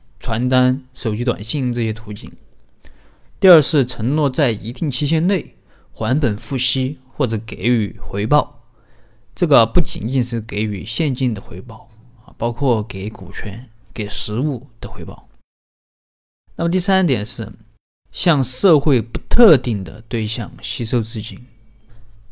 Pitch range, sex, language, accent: 110-140 Hz, male, Chinese, native